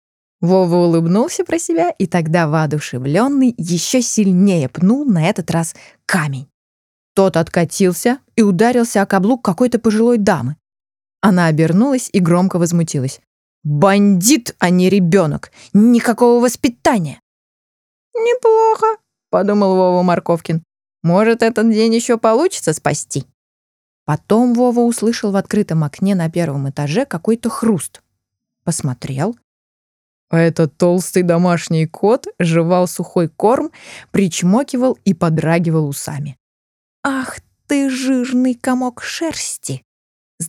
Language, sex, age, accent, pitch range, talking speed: Russian, female, 20-39, native, 155-230 Hz, 110 wpm